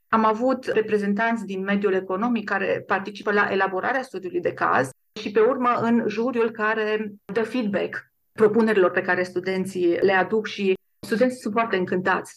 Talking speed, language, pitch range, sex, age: 155 wpm, Romanian, 195-225 Hz, female, 40-59